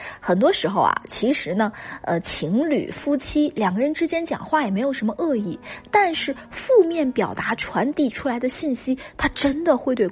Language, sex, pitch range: Chinese, female, 210-320 Hz